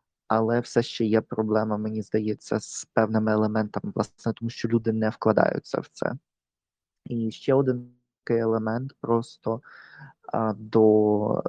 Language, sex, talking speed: Ukrainian, male, 130 wpm